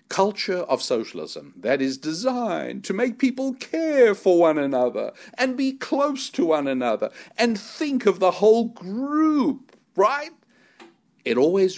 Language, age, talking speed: English, 60-79, 145 wpm